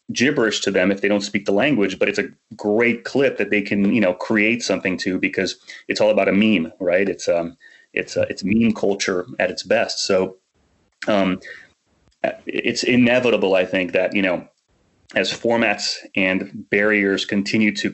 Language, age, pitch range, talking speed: English, 30-49, 100-115 Hz, 180 wpm